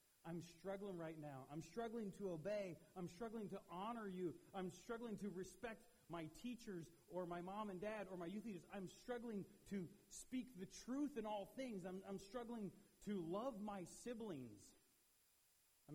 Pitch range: 120-195 Hz